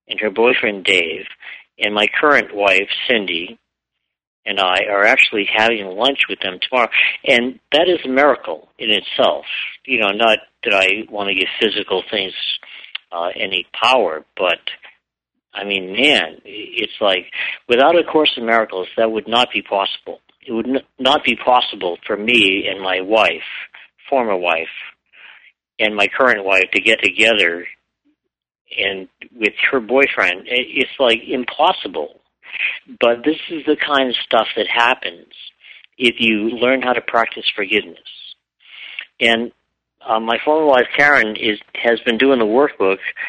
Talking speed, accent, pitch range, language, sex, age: 150 wpm, American, 105-145 Hz, English, male, 60-79